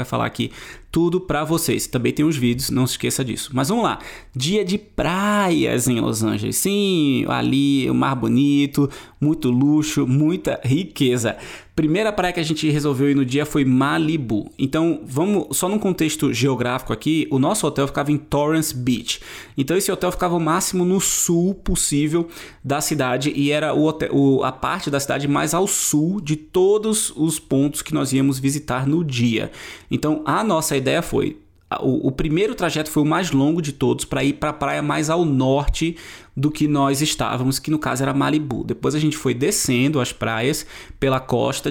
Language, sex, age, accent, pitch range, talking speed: Portuguese, male, 20-39, Brazilian, 130-155 Hz, 185 wpm